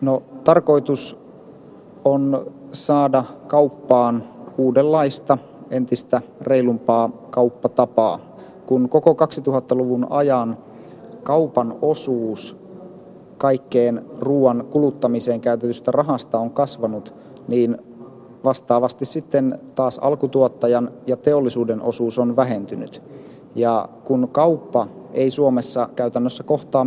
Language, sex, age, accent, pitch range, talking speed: Finnish, male, 30-49, native, 120-140 Hz, 85 wpm